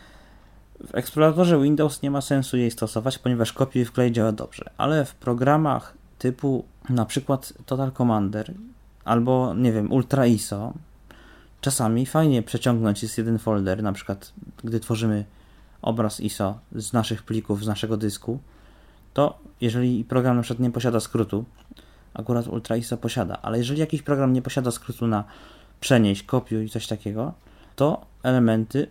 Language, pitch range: Polish, 105-125 Hz